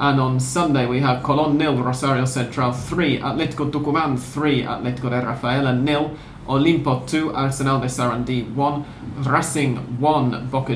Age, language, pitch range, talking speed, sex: 40-59, English, 125-145 Hz, 145 wpm, male